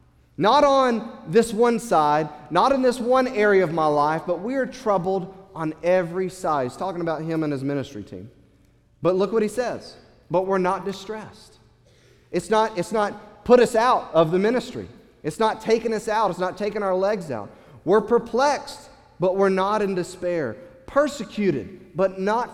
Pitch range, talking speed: 180-240 Hz, 180 wpm